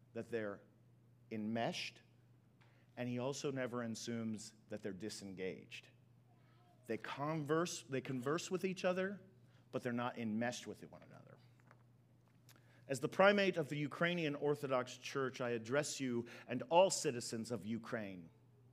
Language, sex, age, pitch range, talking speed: English, male, 40-59, 120-165 Hz, 130 wpm